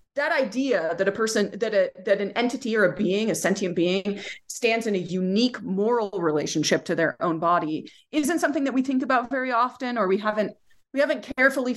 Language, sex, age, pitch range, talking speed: English, female, 30-49, 180-255 Hz, 205 wpm